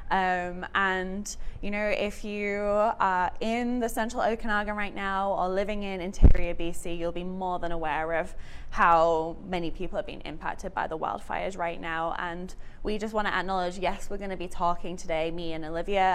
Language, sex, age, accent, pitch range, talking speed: English, female, 20-39, British, 170-200 Hz, 185 wpm